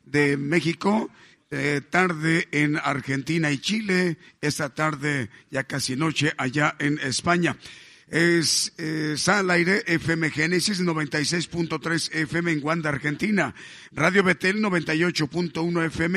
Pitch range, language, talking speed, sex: 155-180 Hz, English, 115 wpm, male